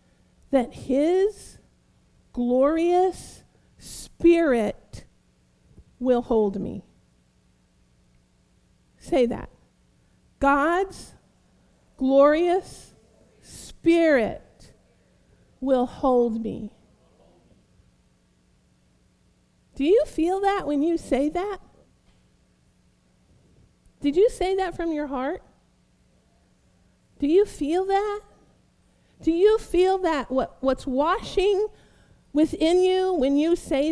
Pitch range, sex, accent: 225-335 Hz, female, American